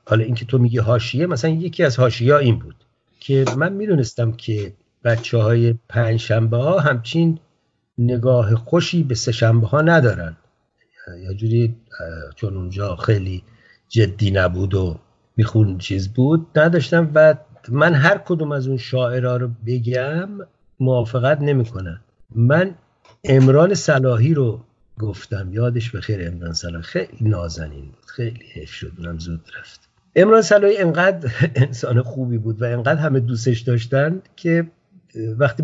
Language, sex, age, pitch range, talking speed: Persian, male, 50-69, 110-155 Hz, 135 wpm